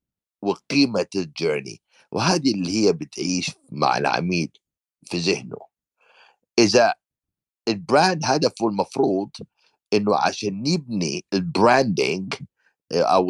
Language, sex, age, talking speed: Arabic, male, 60-79, 85 wpm